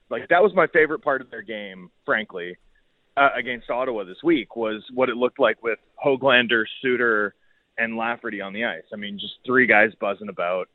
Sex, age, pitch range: male, 30-49, 115-145 Hz